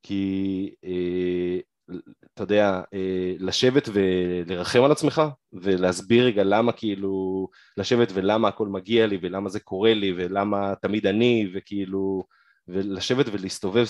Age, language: 20-39, Hebrew